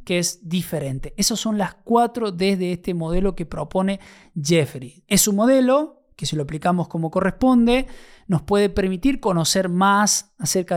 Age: 20-39